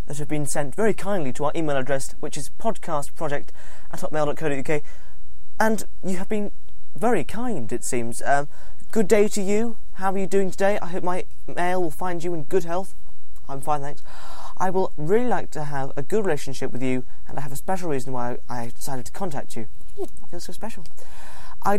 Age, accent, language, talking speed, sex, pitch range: 20-39, British, English, 205 wpm, male, 120-175 Hz